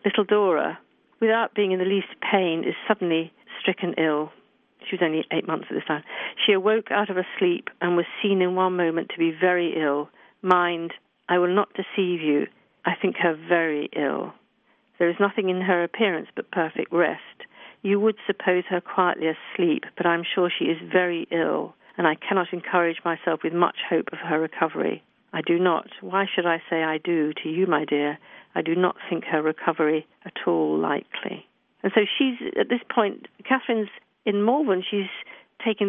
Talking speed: 190 wpm